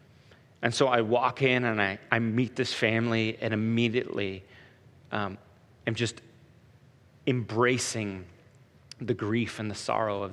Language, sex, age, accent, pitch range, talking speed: English, male, 30-49, American, 115-135 Hz, 135 wpm